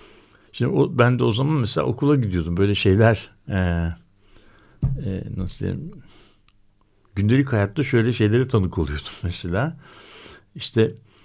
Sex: male